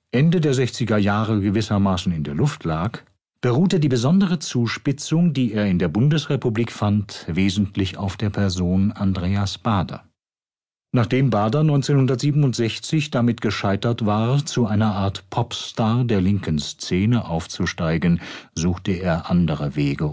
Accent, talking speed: German, 130 wpm